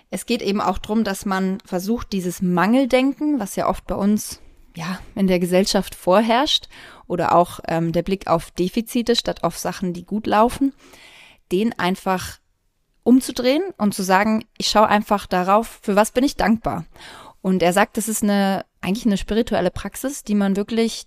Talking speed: 175 wpm